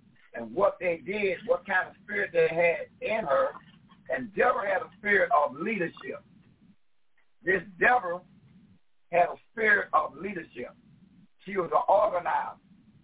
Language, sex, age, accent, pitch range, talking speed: English, male, 60-79, American, 175-215 Hz, 140 wpm